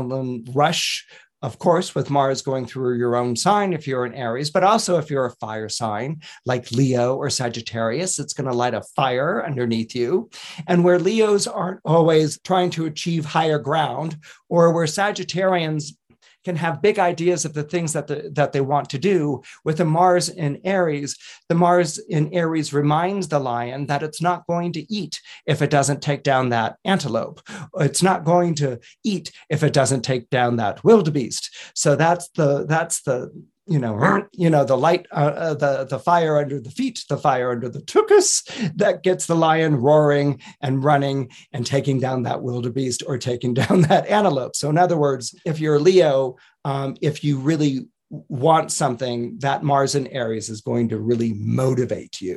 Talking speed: 185 wpm